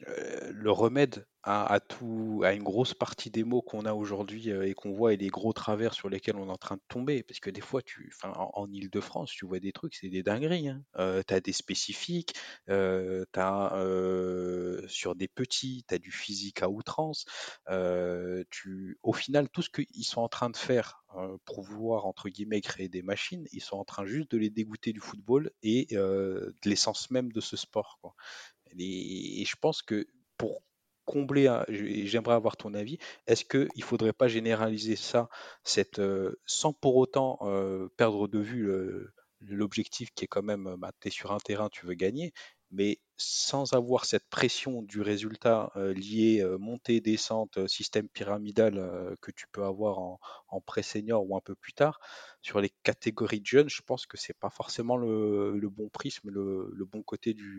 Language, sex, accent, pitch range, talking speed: French, male, French, 95-115 Hz, 190 wpm